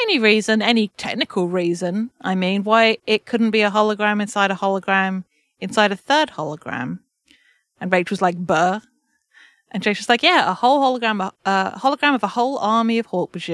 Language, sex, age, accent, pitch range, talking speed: English, female, 30-49, British, 185-240 Hz, 180 wpm